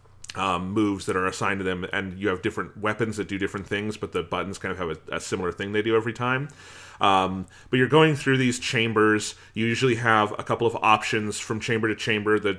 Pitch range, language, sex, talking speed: 100-120 Hz, English, male, 235 wpm